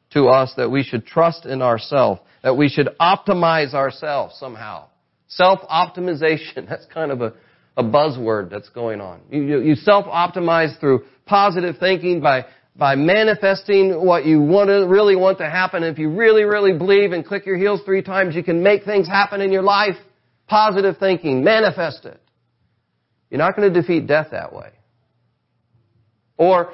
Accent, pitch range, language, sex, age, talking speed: American, 115-180 Hz, English, male, 40-59, 165 wpm